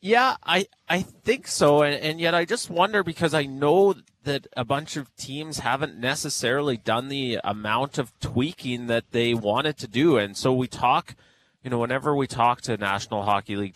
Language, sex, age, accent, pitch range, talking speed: English, male, 30-49, American, 105-135 Hz, 190 wpm